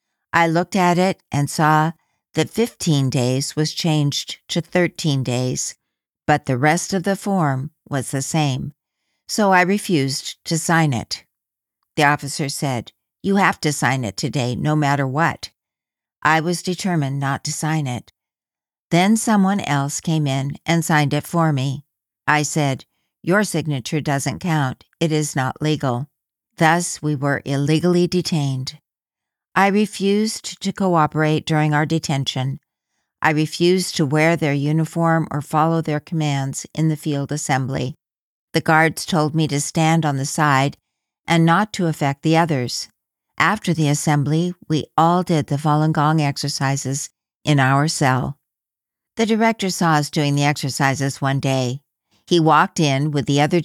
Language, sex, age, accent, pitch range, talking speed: English, female, 60-79, American, 140-165 Hz, 155 wpm